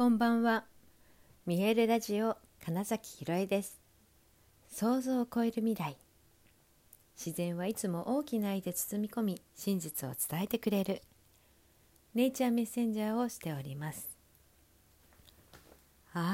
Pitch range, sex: 145-210 Hz, female